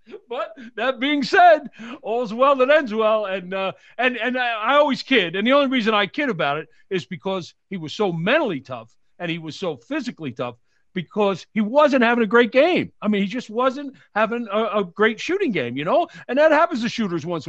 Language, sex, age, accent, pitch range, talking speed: English, male, 50-69, American, 185-260 Hz, 215 wpm